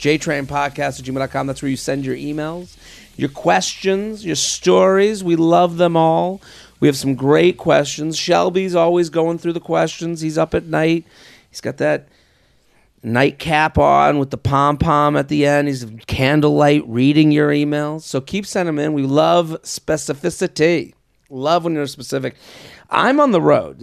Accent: American